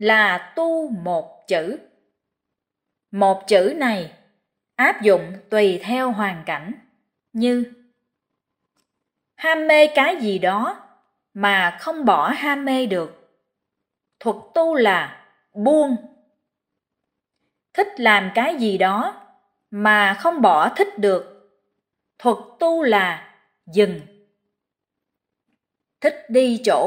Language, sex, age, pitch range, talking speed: Vietnamese, female, 20-39, 205-265 Hz, 105 wpm